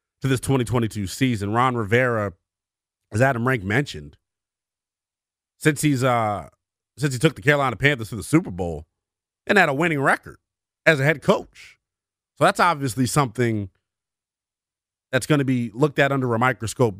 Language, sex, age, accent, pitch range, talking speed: English, male, 30-49, American, 105-155 Hz, 160 wpm